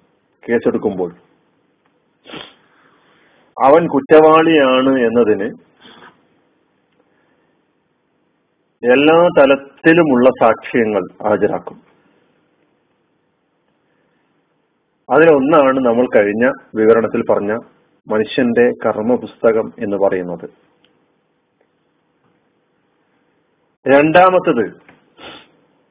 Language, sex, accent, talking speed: Malayalam, male, native, 45 wpm